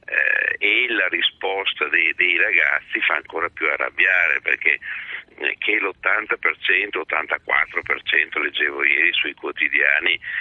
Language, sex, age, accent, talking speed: Italian, male, 50-69, native, 105 wpm